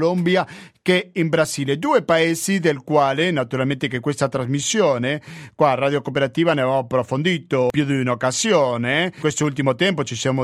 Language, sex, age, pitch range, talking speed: Italian, male, 40-59, 135-185 Hz, 155 wpm